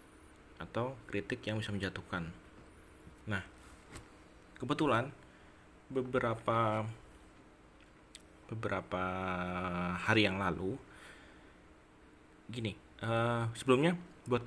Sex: male